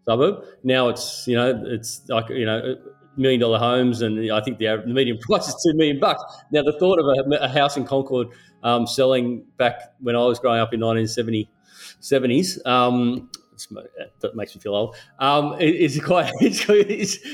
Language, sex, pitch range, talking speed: English, male, 120-145 Hz, 195 wpm